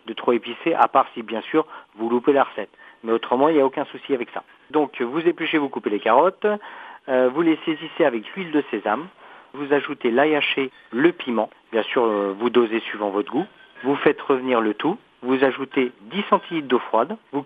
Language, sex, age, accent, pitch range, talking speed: French, male, 40-59, French, 120-155 Hz, 215 wpm